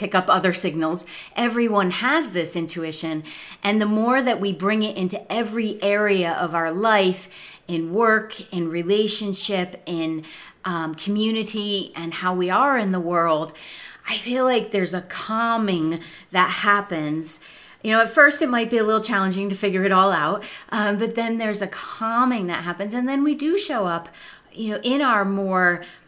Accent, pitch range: American, 175-225 Hz